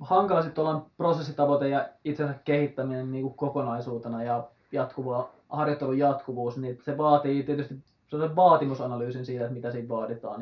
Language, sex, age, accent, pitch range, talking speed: Finnish, male, 20-39, native, 125-145 Hz, 110 wpm